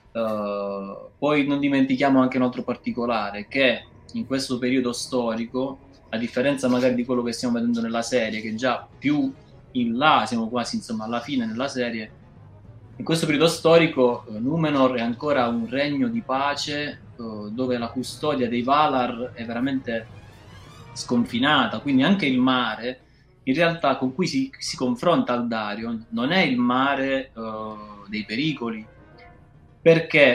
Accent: native